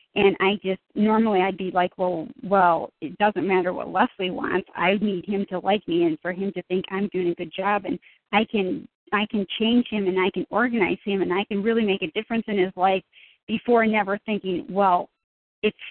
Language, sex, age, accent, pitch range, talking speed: English, female, 40-59, American, 190-220 Hz, 220 wpm